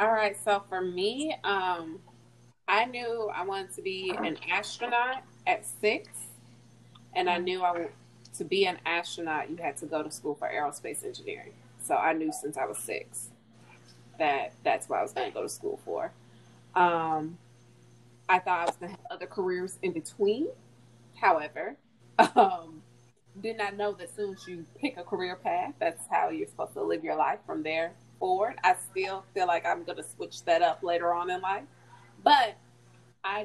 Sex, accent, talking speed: female, American, 185 wpm